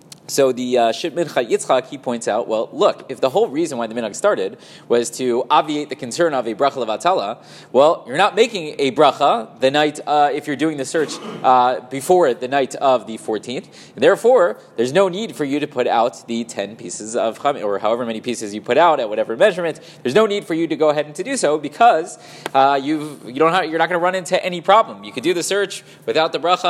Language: English